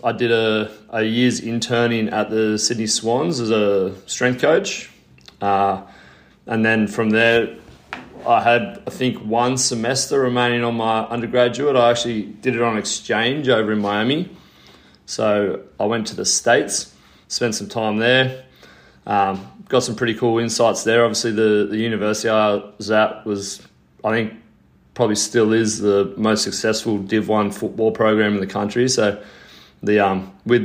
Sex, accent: male, Australian